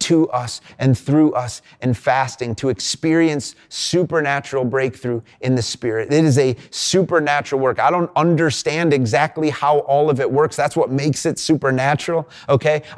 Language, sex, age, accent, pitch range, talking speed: English, male, 30-49, American, 130-165 Hz, 155 wpm